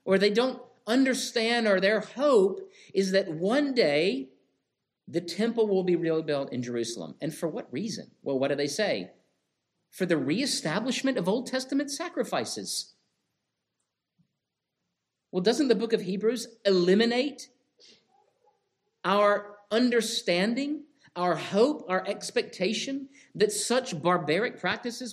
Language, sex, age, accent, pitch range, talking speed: English, male, 50-69, American, 180-245 Hz, 120 wpm